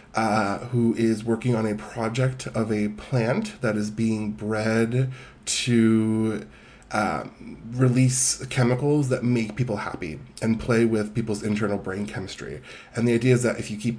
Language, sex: English, male